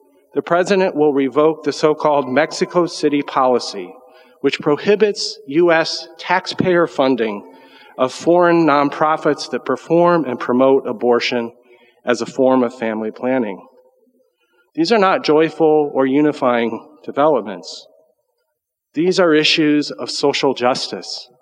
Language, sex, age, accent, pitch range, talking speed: English, male, 40-59, American, 135-180 Hz, 115 wpm